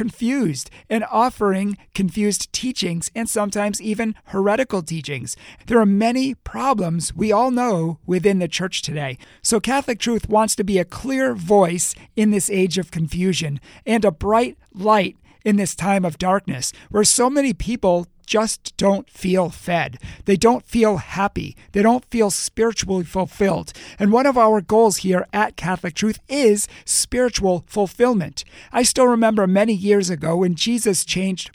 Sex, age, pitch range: male, 40-59, 180-225 Hz